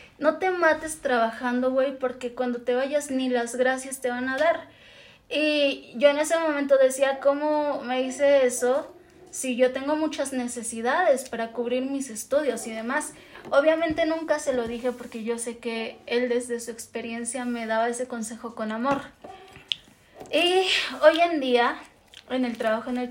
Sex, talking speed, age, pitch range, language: female, 170 wpm, 20-39, 240-280 Hz, Spanish